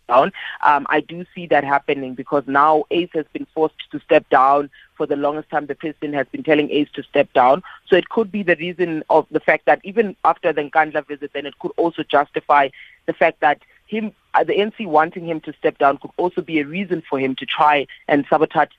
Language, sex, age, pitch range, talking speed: English, female, 30-49, 145-175 Hz, 225 wpm